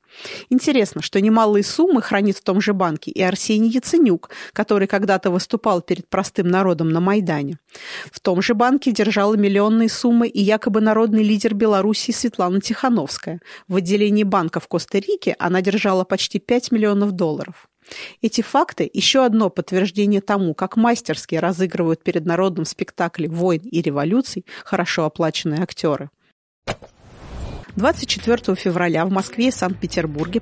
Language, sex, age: Russian, female, 30-49